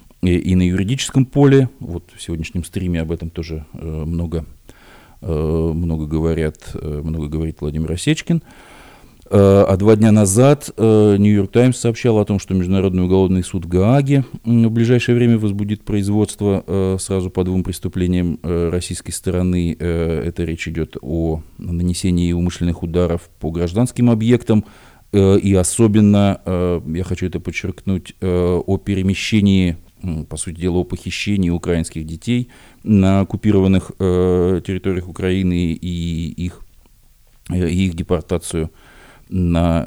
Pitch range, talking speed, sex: 85-100 Hz, 115 wpm, male